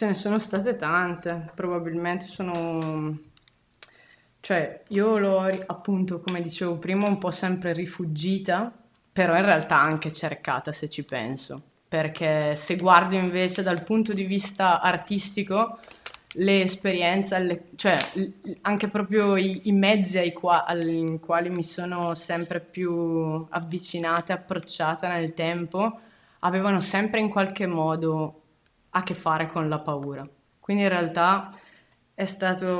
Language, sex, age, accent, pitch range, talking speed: Italian, female, 20-39, native, 160-190 Hz, 130 wpm